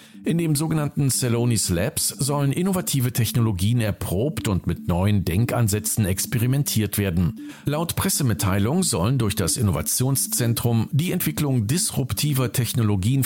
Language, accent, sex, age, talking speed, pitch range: German, German, male, 50-69, 115 wpm, 100-140 Hz